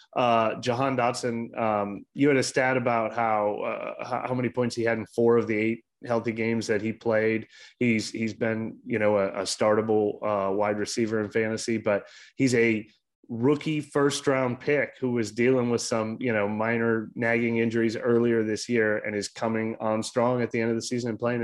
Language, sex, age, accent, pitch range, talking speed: English, male, 30-49, American, 105-120 Hz, 200 wpm